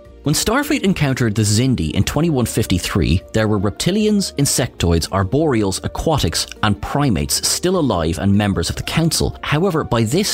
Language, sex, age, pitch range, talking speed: English, male, 30-49, 95-140 Hz, 145 wpm